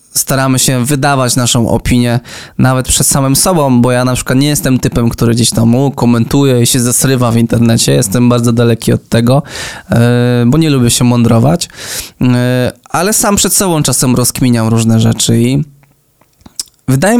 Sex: male